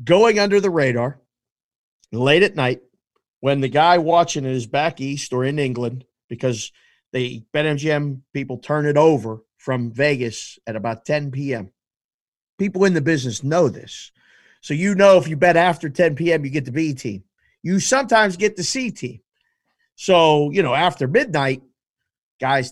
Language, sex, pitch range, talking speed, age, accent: English, male, 130-195 Hz, 170 wpm, 50-69, American